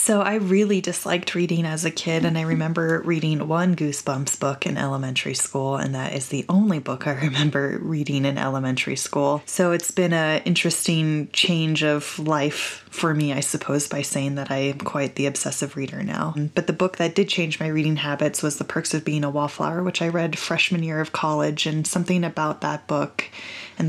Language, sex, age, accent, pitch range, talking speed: English, female, 20-39, American, 145-175 Hz, 205 wpm